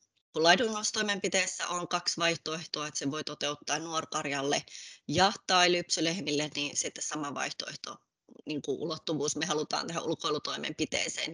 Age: 20-39